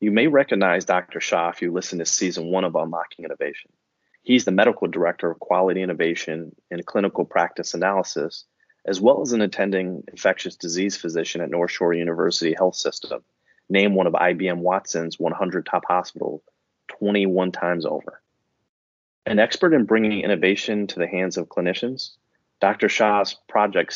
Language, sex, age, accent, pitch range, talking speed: English, male, 30-49, American, 85-100 Hz, 160 wpm